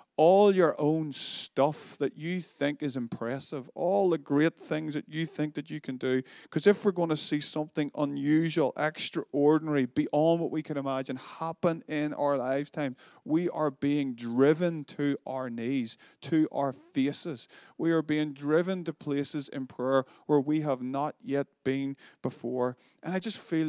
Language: English